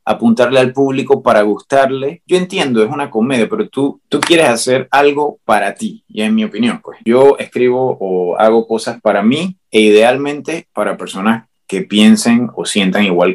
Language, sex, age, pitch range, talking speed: English, male, 30-49, 115-170 Hz, 175 wpm